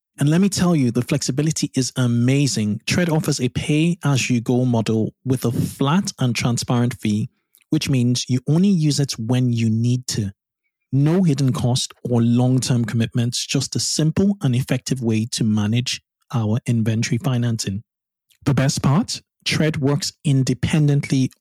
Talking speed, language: 150 wpm, English